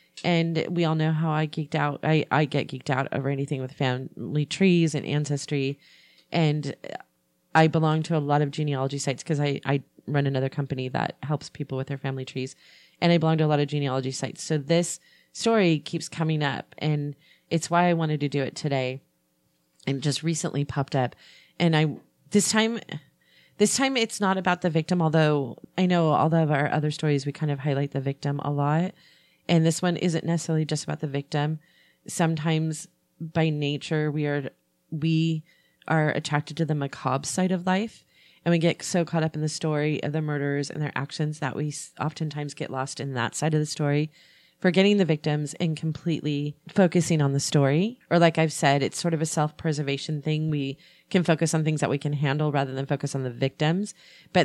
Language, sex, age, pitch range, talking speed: English, female, 30-49, 140-165 Hz, 200 wpm